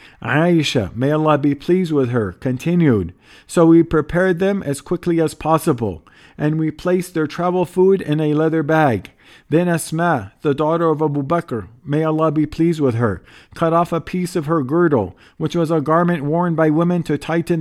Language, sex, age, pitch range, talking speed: English, male, 50-69, 140-165 Hz, 185 wpm